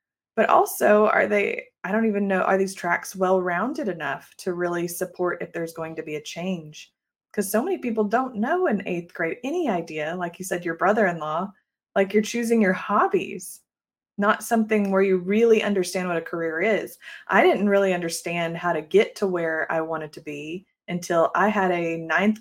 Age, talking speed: 20-39, 195 wpm